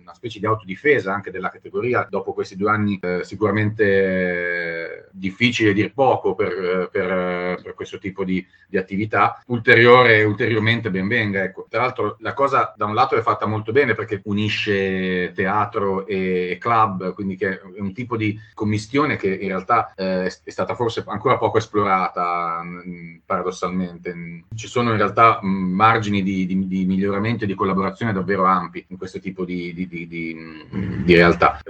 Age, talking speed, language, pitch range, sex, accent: 40-59, 160 wpm, Italian, 90-110 Hz, male, native